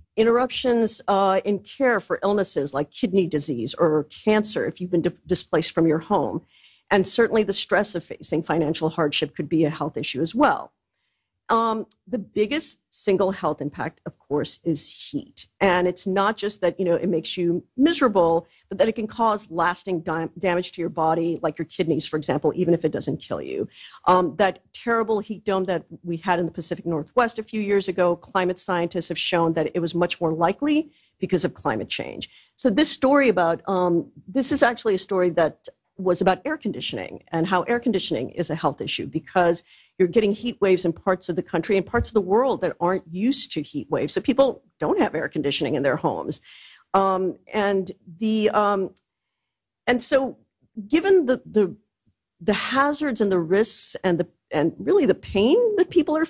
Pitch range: 170-225 Hz